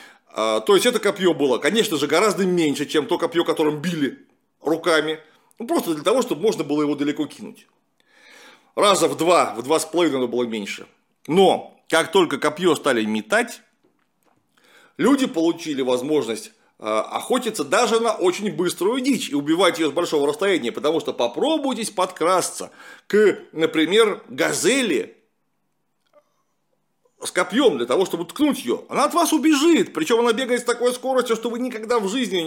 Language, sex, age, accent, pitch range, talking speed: Russian, male, 40-59, native, 155-250 Hz, 160 wpm